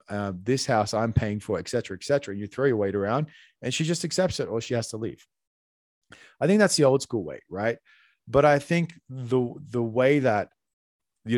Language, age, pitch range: English, 30-49, 100-130 Hz